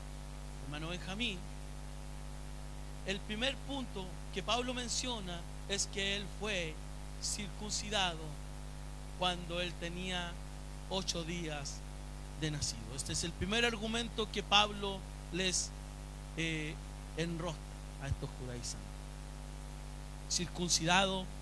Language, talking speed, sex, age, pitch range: Spanish, 95 wpm, male, 40-59, 160-230 Hz